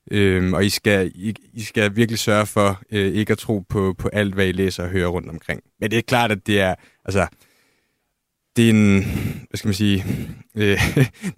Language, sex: Danish, male